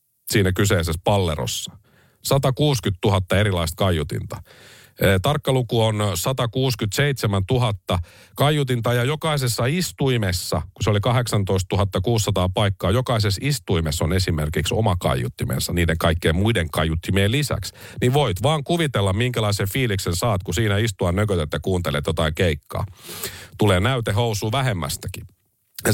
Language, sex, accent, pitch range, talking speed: Finnish, male, native, 90-120 Hz, 120 wpm